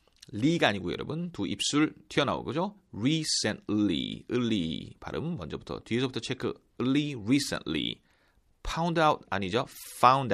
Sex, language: male, Korean